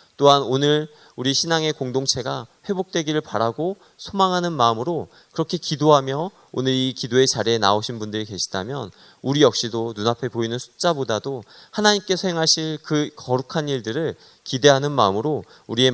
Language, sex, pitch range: Korean, male, 120-155 Hz